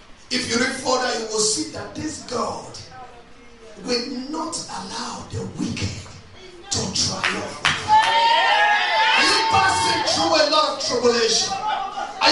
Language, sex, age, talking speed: English, male, 40-59, 125 wpm